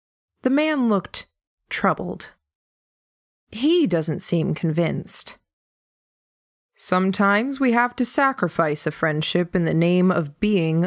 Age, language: 20-39, English